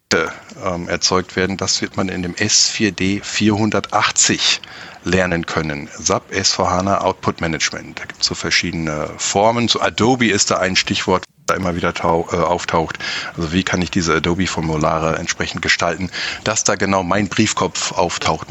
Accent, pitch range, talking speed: German, 85-110 Hz, 150 wpm